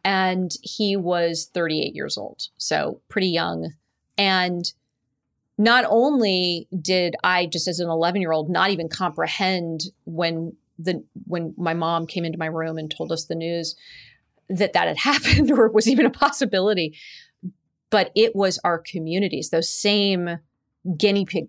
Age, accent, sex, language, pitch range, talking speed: 30-49, American, female, English, 165-195 Hz, 155 wpm